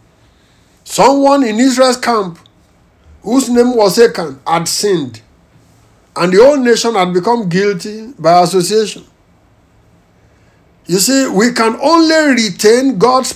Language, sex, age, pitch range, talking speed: English, male, 60-79, 190-245 Hz, 115 wpm